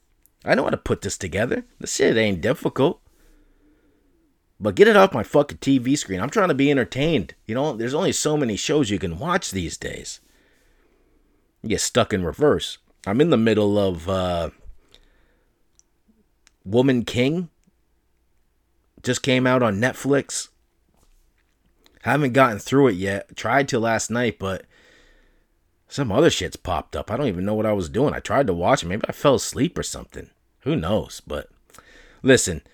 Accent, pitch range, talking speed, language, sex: American, 95-130 Hz, 170 wpm, English, male